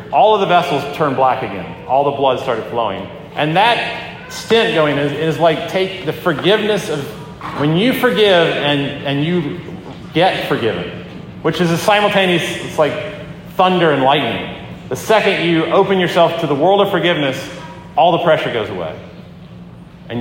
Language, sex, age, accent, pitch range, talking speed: English, male, 40-59, American, 140-180 Hz, 165 wpm